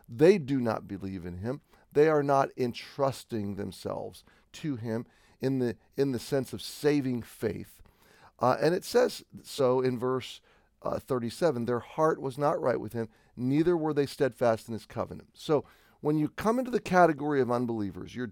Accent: American